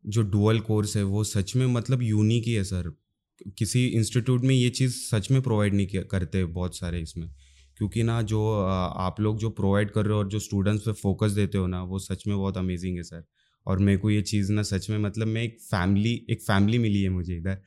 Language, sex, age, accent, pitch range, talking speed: English, male, 20-39, Indian, 95-110 Hz, 205 wpm